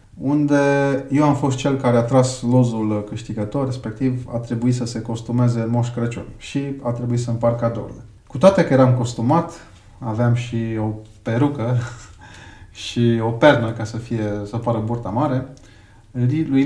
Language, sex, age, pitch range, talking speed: Romanian, male, 30-49, 115-135 Hz, 160 wpm